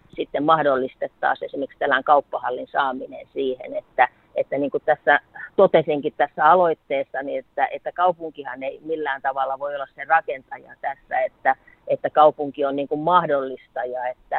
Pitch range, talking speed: 135-165 Hz, 145 wpm